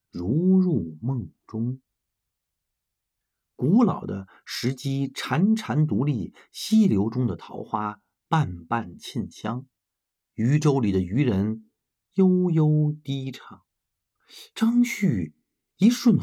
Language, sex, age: Chinese, male, 50-69